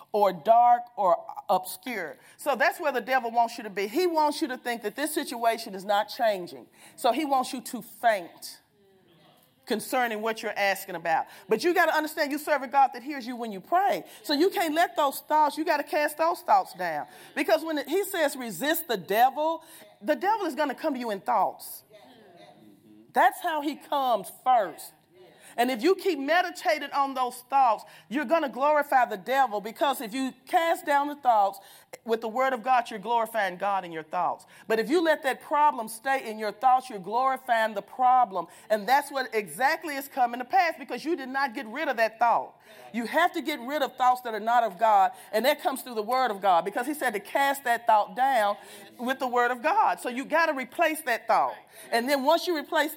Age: 40-59